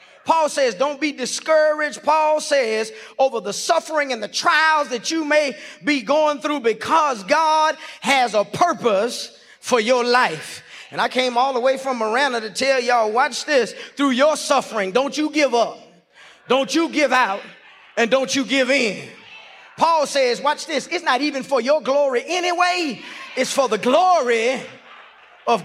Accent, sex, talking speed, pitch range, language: American, male, 170 wpm, 230-285 Hz, English